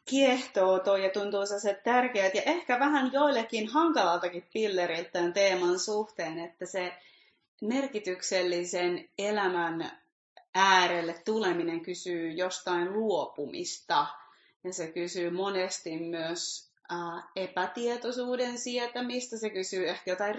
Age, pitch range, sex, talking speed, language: 30-49, 170-215 Hz, female, 105 wpm, Finnish